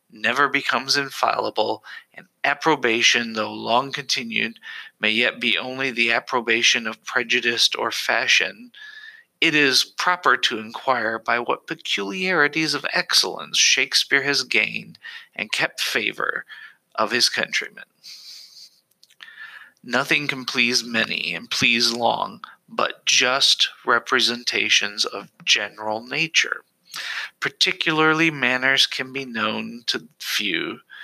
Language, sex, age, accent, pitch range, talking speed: English, male, 40-59, American, 115-155 Hz, 110 wpm